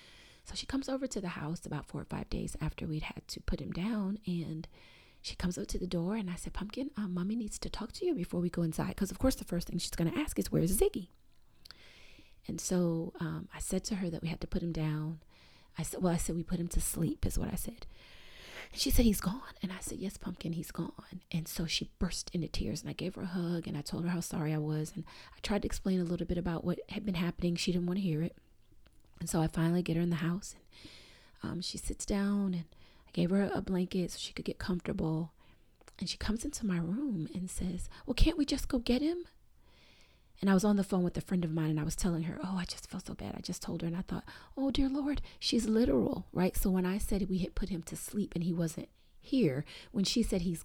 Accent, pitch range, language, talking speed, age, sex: American, 170-200 Hz, English, 270 wpm, 30-49, female